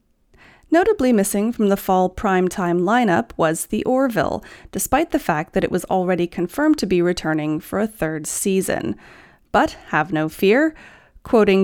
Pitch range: 175-275 Hz